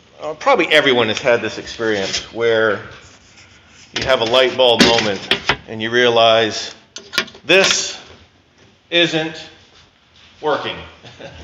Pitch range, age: 115-145 Hz, 40-59